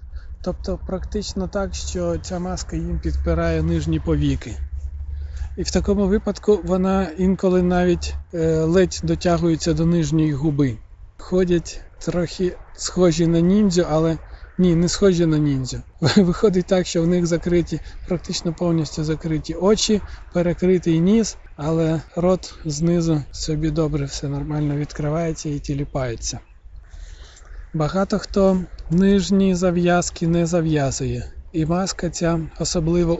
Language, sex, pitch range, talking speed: Ukrainian, male, 145-175 Hz, 115 wpm